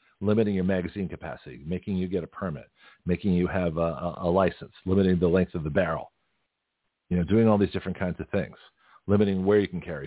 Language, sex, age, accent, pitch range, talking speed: English, male, 50-69, American, 90-105 Hz, 215 wpm